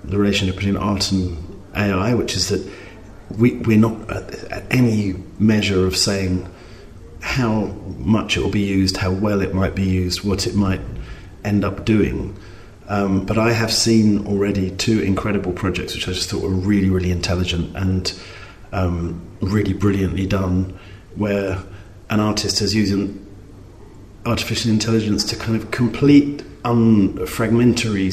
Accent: British